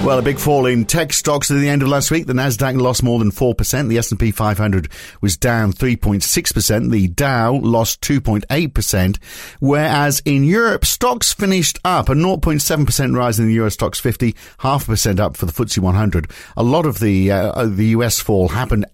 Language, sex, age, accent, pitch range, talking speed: English, male, 50-69, British, 100-140 Hz, 190 wpm